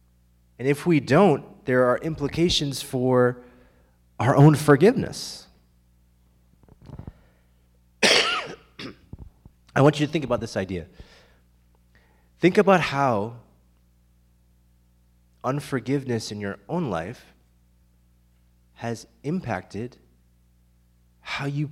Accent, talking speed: American, 85 wpm